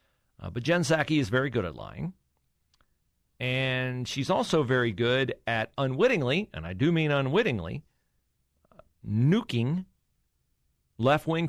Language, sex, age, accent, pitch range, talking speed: English, male, 40-59, American, 100-165 Hz, 125 wpm